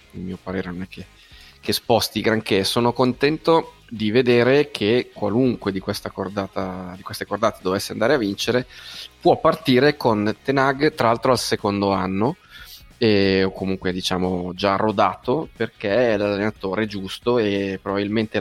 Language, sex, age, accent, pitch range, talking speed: Italian, male, 20-39, native, 100-120 Hz, 145 wpm